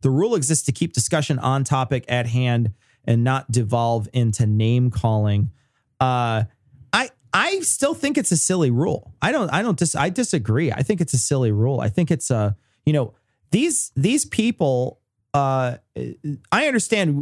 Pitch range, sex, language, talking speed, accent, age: 120-165 Hz, male, English, 175 wpm, American, 30-49